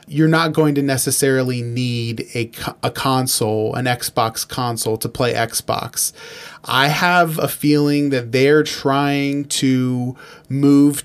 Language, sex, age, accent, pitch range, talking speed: English, male, 20-39, American, 120-145 Hz, 130 wpm